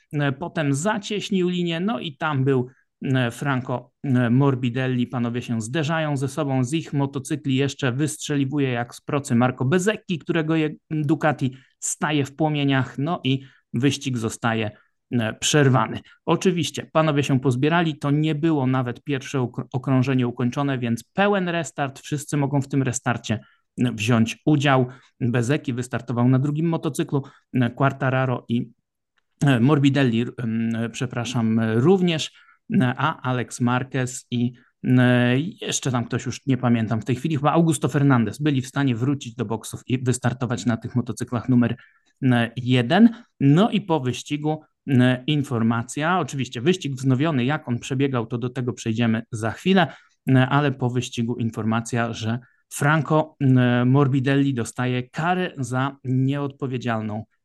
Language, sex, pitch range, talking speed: Polish, male, 125-150 Hz, 130 wpm